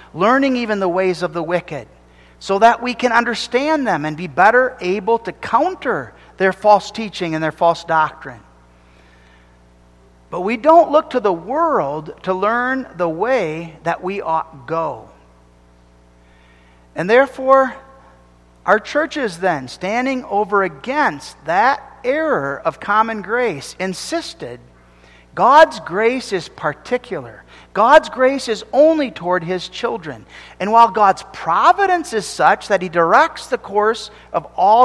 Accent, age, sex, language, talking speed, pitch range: American, 50-69, male, English, 135 wpm, 155-250 Hz